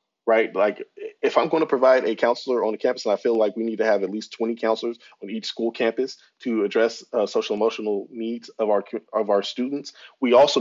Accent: American